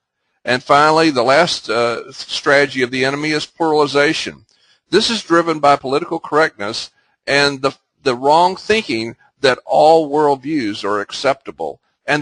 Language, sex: English, male